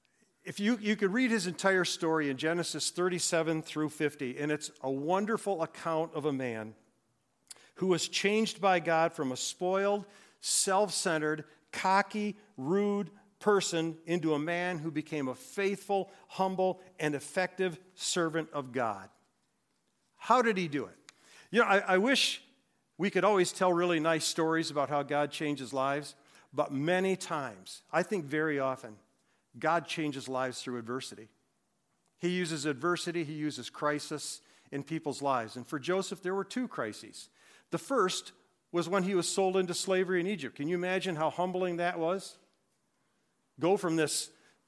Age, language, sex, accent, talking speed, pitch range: 50-69, English, male, American, 155 wpm, 150-190 Hz